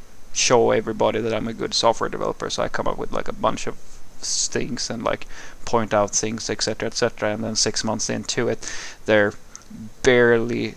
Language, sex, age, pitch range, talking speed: English, male, 20-39, 110-140 Hz, 185 wpm